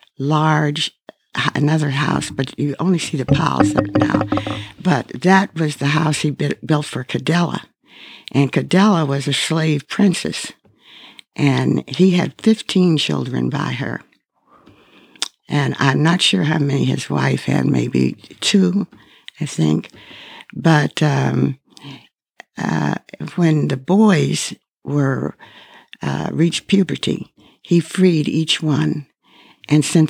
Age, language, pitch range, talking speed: 60-79, English, 135-160 Hz, 125 wpm